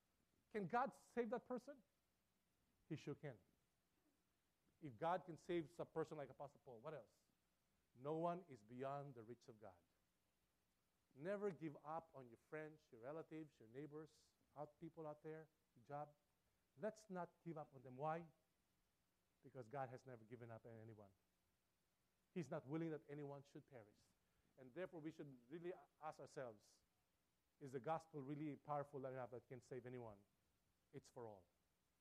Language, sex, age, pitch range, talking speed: English, male, 50-69, 120-155 Hz, 160 wpm